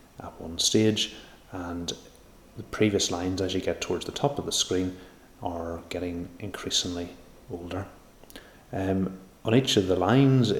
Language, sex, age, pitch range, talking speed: English, male, 30-49, 90-110 Hz, 145 wpm